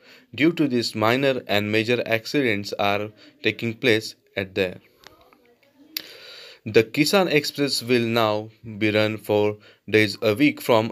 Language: Marathi